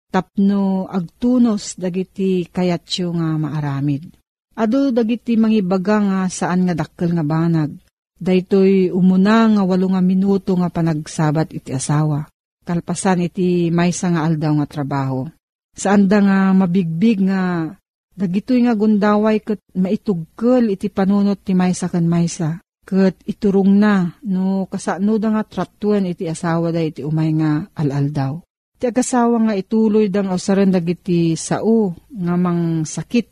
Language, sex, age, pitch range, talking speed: Filipino, female, 40-59, 165-205 Hz, 130 wpm